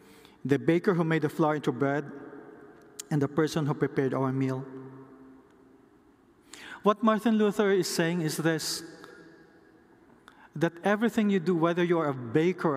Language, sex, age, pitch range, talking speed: English, male, 20-39, 140-180 Hz, 140 wpm